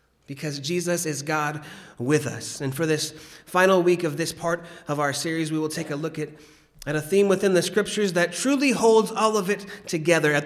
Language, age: English, 30-49